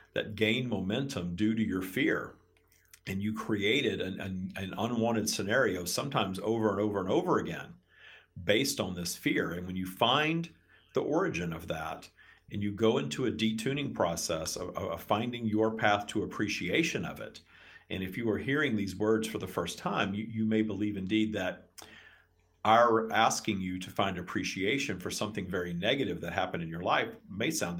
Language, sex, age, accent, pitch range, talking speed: English, male, 50-69, American, 95-110 Hz, 180 wpm